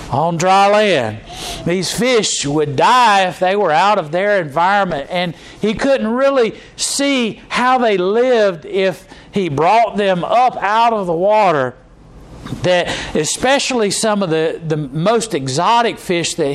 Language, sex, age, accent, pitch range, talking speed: English, male, 50-69, American, 150-205 Hz, 150 wpm